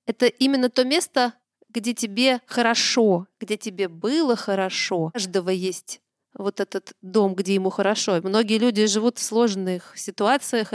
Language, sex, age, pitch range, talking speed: Russian, female, 30-49, 200-250 Hz, 145 wpm